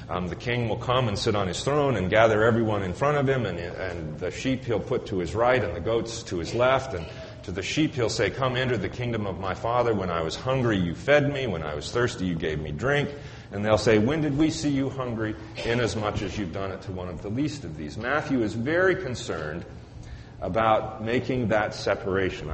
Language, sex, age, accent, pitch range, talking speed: English, male, 40-59, American, 100-135 Hz, 235 wpm